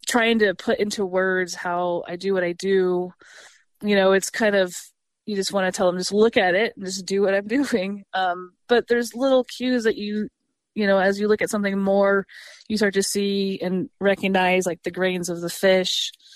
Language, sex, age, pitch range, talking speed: English, female, 20-39, 180-210 Hz, 215 wpm